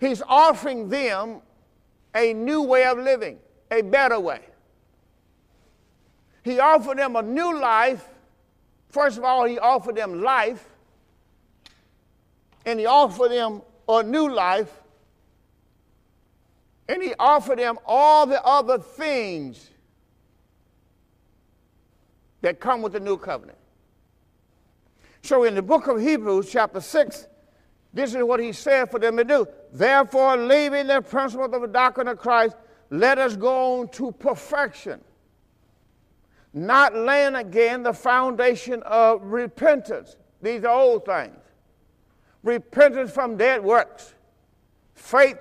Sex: male